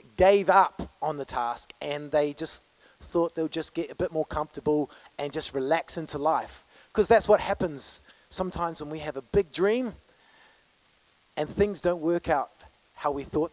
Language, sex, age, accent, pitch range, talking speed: English, male, 30-49, Australian, 135-175 Hz, 180 wpm